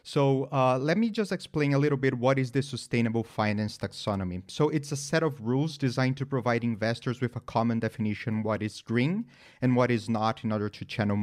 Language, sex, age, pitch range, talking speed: English, male, 30-49, 110-130 Hz, 215 wpm